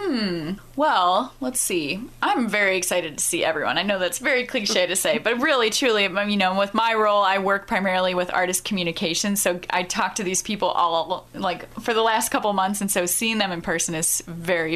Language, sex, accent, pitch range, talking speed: English, female, American, 180-215 Hz, 210 wpm